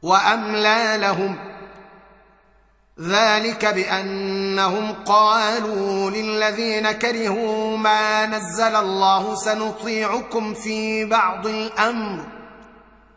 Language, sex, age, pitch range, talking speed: Arabic, male, 30-49, 195-220 Hz, 65 wpm